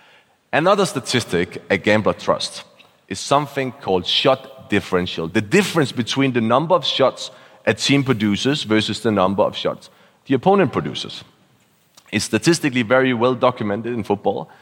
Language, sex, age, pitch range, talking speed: English, male, 30-49, 110-145 Hz, 145 wpm